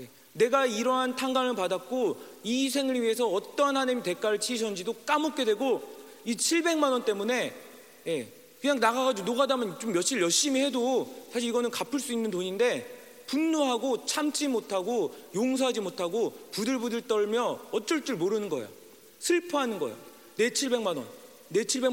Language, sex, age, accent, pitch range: Korean, male, 40-59, native, 200-265 Hz